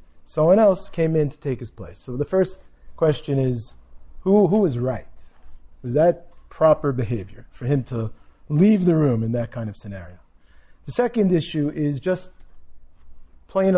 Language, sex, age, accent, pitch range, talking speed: English, male, 40-59, American, 115-155 Hz, 165 wpm